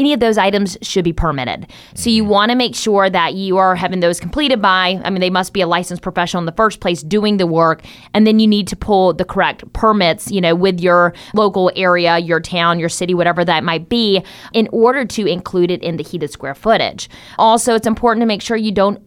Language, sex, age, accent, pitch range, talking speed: English, female, 20-39, American, 170-210 Hz, 240 wpm